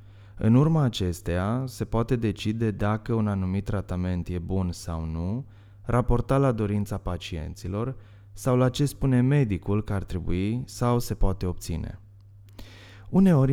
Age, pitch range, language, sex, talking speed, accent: 20-39, 95-110 Hz, Romanian, male, 135 wpm, native